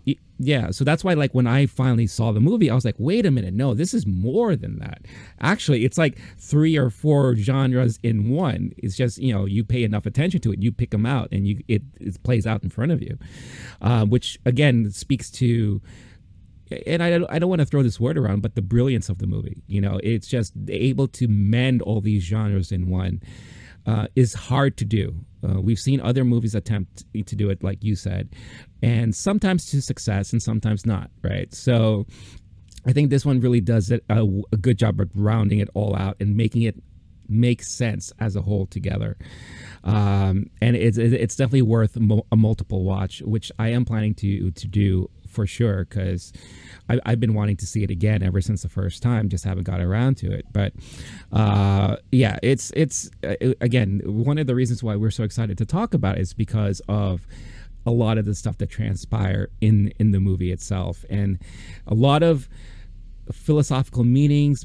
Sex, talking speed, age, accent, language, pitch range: male, 200 wpm, 30-49, American, English, 100-125 Hz